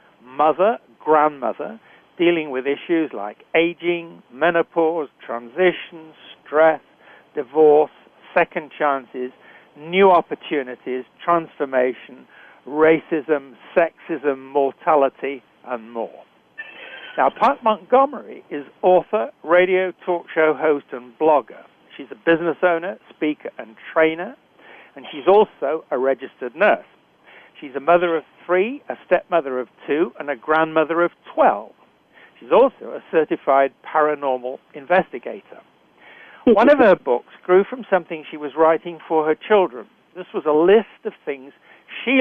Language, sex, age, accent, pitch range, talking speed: English, male, 60-79, British, 145-180 Hz, 120 wpm